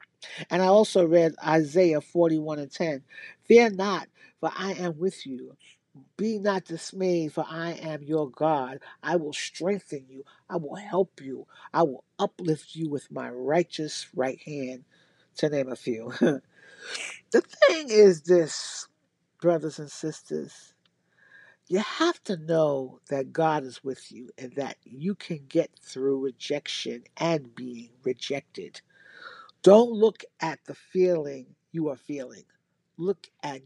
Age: 50-69